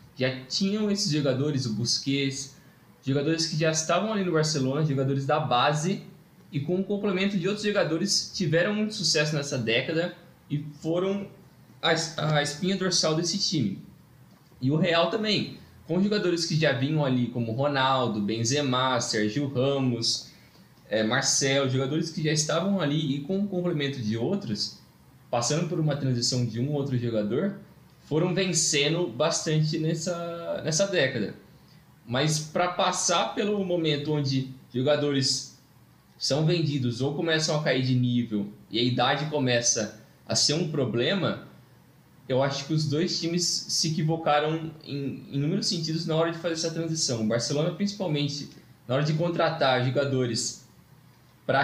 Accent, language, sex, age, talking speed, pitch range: Brazilian, Portuguese, male, 20-39, 145 wpm, 135-170 Hz